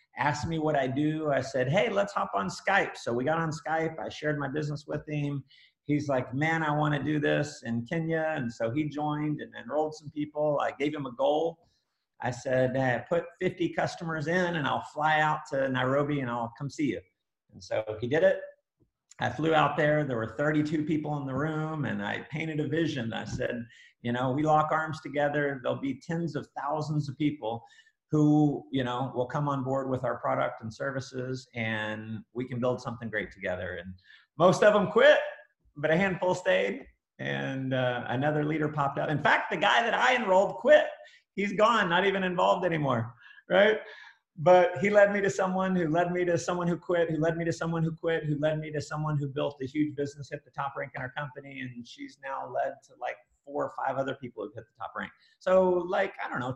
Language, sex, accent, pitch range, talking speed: English, male, American, 130-165 Hz, 225 wpm